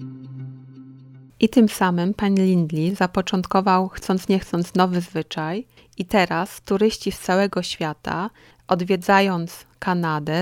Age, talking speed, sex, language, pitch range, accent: 30-49, 110 wpm, female, Polish, 175-200 Hz, native